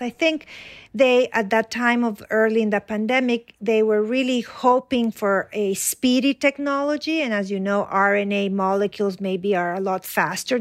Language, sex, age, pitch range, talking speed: English, female, 50-69, 195-240 Hz, 170 wpm